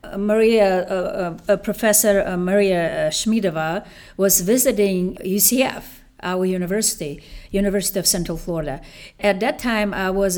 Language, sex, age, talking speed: Slovak, female, 50-69, 120 wpm